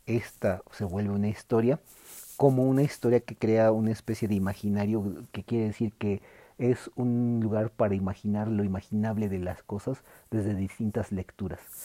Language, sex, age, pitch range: Spanish, male, 40-59, 100-115 Hz